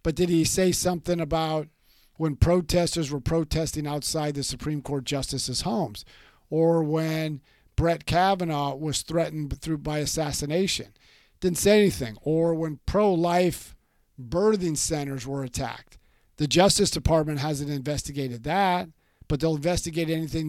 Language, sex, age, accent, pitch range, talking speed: English, male, 50-69, American, 150-190 Hz, 130 wpm